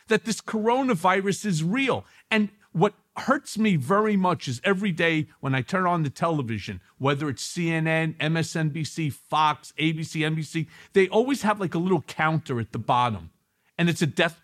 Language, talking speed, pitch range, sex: English, 170 wpm, 160-225 Hz, male